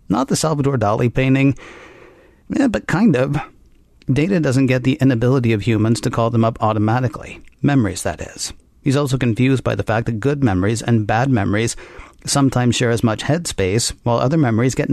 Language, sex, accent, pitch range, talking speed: English, male, American, 115-140 Hz, 180 wpm